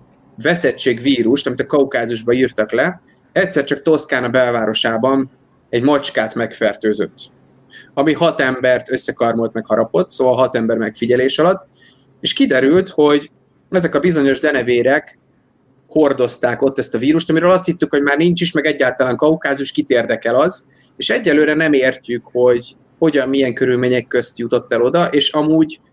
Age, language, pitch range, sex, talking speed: 30-49, Hungarian, 125-150 Hz, male, 150 wpm